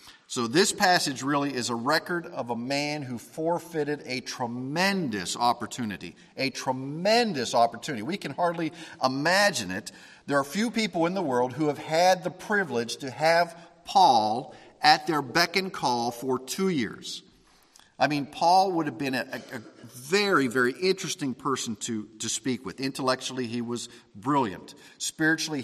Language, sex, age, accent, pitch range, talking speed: English, male, 50-69, American, 125-170 Hz, 155 wpm